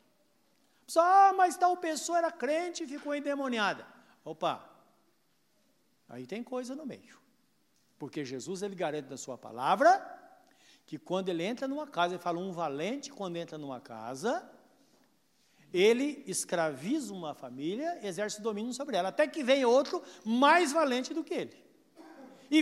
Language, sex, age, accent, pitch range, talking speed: Portuguese, male, 60-79, Brazilian, 205-310 Hz, 145 wpm